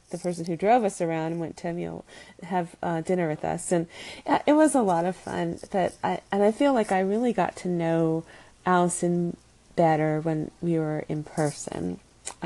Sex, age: female, 40-59